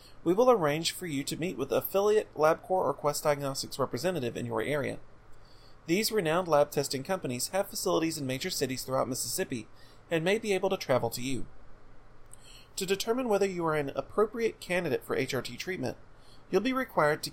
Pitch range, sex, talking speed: 125-185 Hz, male, 185 wpm